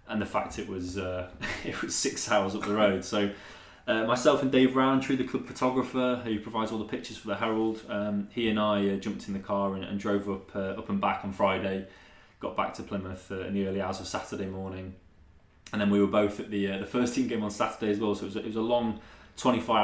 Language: English